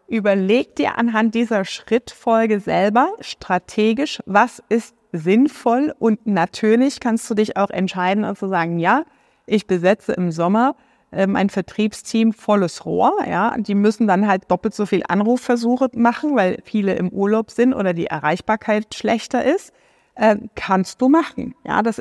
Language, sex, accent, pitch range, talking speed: German, female, German, 200-250 Hz, 155 wpm